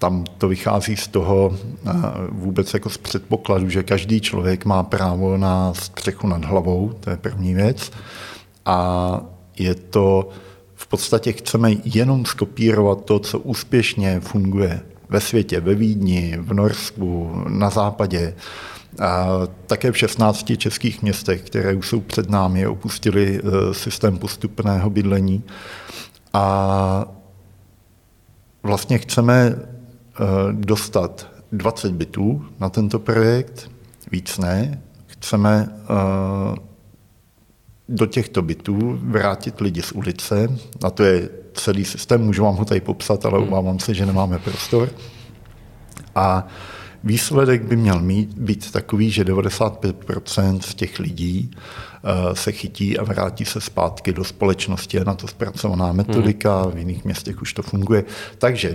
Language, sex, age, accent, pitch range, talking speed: Czech, male, 50-69, native, 95-110 Hz, 125 wpm